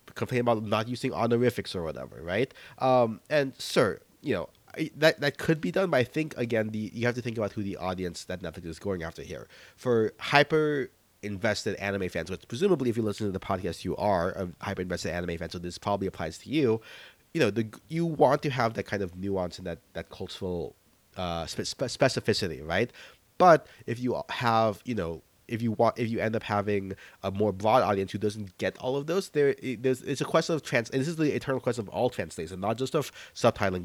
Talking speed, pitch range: 220 wpm, 95-125 Hz